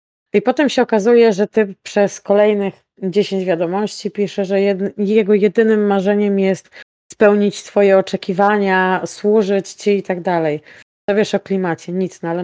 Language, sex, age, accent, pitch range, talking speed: Polish, female, 20-39, native, 190-220 Hz, 155 wpm